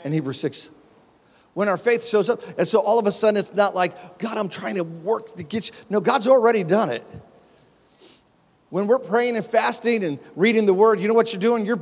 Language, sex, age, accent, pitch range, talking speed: English, male, 40-59, American, 190-235 Hz, 230 wpm